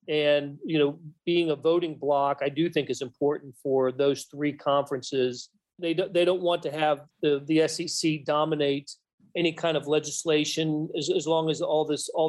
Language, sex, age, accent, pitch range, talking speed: English, male, 40-59, American, 140-160 Hz, 185 wpm